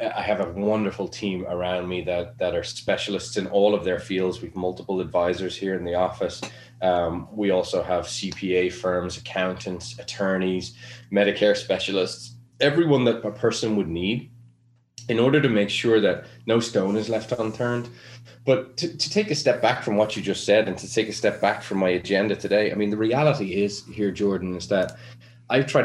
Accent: Irish